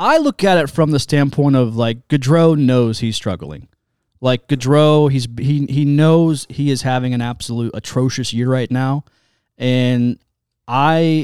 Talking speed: 160 wpm